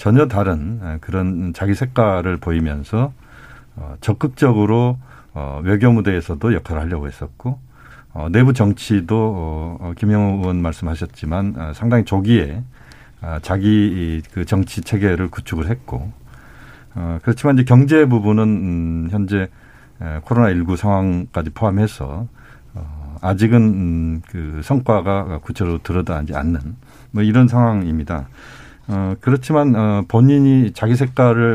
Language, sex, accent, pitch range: Korean, male, native, 85-120 Hz